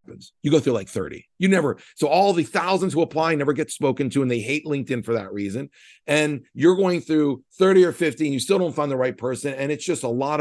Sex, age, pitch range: male, 40-59, 130-175 Hz